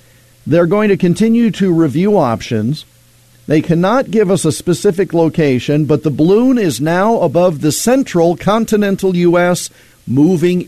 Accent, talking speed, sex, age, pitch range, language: American, 140 wpm, male, 50-69, 125-180 Hz, English